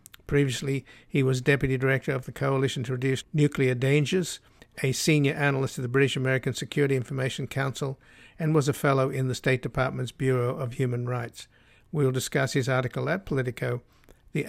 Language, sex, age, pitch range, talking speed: English, male, 60-79, 125-140 Hz, 175 wpm